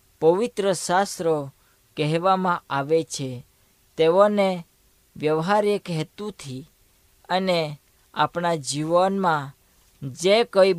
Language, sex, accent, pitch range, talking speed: Hindi, female, native, 140-190 Hz, 60 wpm